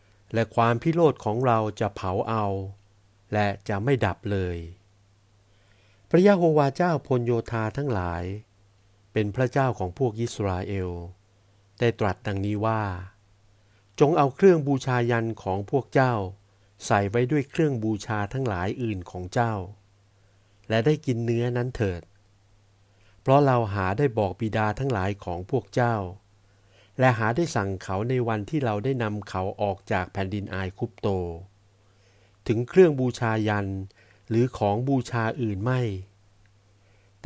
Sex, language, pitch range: male, Thai, 100-120 Hz